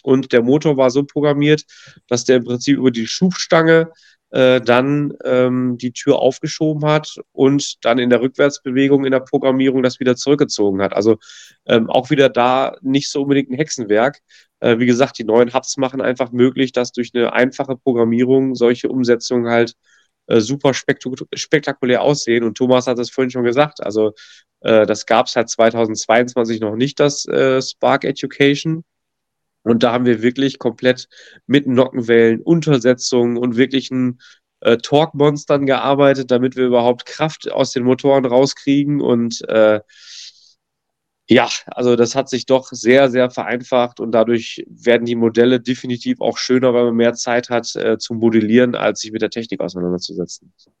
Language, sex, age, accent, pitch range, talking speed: German, male, 30-49, German, 120-140 Hz, 165 wpm